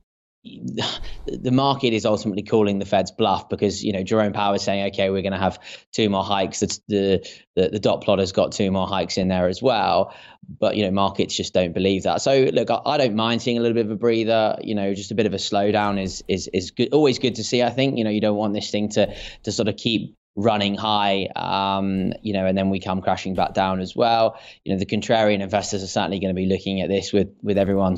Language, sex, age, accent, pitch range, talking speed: English, male, 20-39, British, 100-110 Hz, 255 wpm